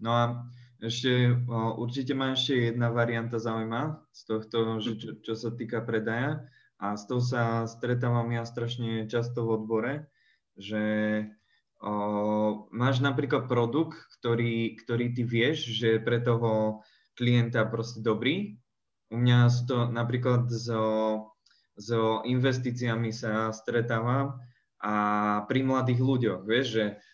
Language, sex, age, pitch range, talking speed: Slovak, male, 20-39, 115-130 Hz, 130 wpm